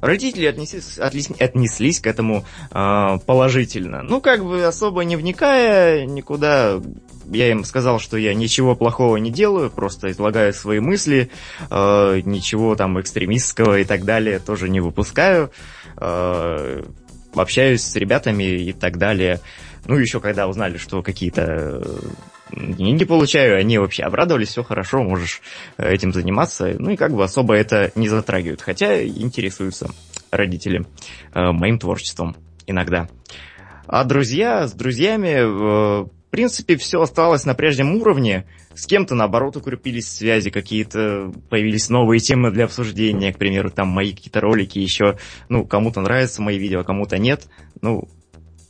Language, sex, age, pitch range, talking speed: Russian, male, 20-39, 95-125 Hz, 140 wpm